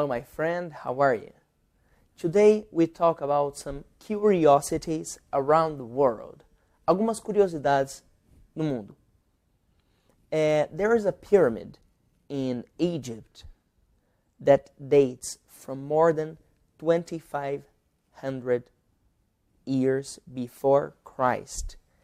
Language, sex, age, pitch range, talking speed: Portuguese, male, 30-49, 135-170 Hz, 95 wpm